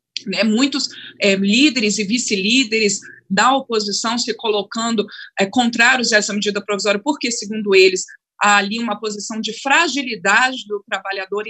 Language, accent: Portuguese, Brazilian